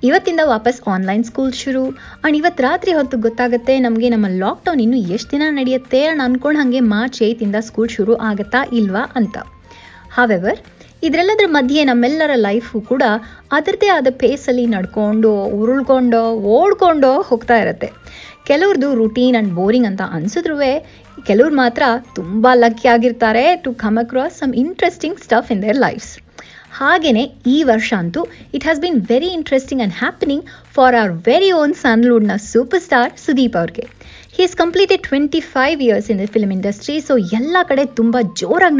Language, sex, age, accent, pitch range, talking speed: Kannada, female, 20-39, native, 225-295 Hz, 150 wpm